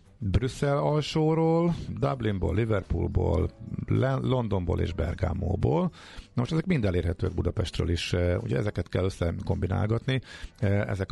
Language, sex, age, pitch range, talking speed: Hungarian, male, 50-69, 90-110 Hz, 105 wpm